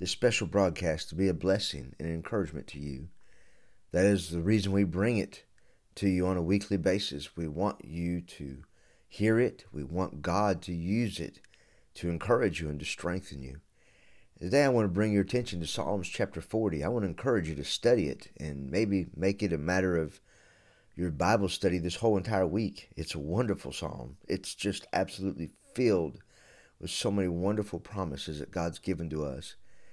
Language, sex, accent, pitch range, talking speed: English, male, American, 85-105 Hz, 190 wpm